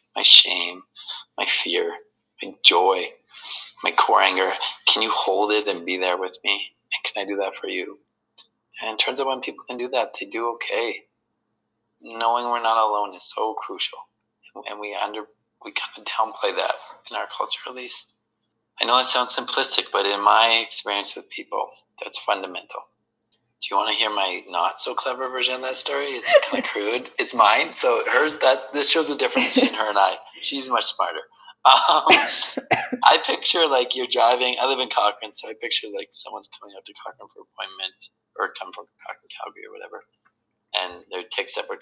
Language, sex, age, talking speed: English, male, 20-39, 190 wpm